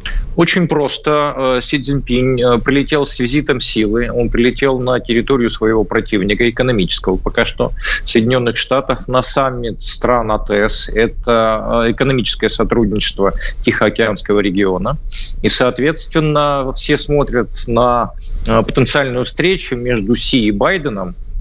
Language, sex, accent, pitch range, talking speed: Russian, male, native, 110-135 Hz, 110 wpm